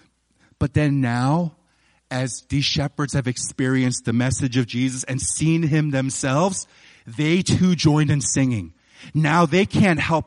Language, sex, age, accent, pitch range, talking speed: English, male, 40-59, American, 130-165 Hz, 145 wpm